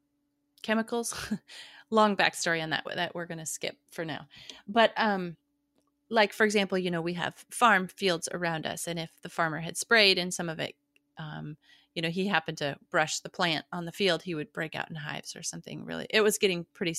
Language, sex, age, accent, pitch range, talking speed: English, female, 30-49, American, 170-225 Hz, 210 wpm